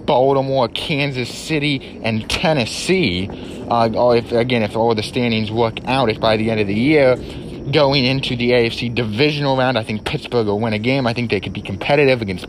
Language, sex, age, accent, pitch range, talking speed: English, male, 30-49, American, 105-135 Hz, 195 wpm